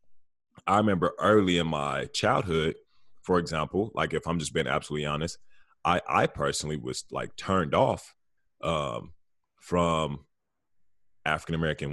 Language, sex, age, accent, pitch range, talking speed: English, male, 30-49, American, 75-85 Hz, 125 wpm